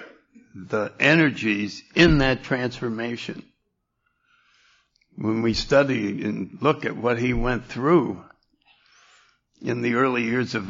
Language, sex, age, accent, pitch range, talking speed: English, male, 60-79, American, 110-135 Hz, 110 wpm